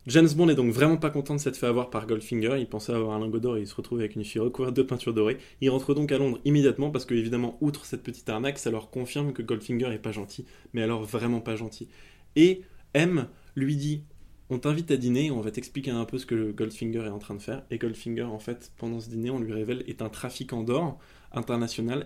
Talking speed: 255 wpm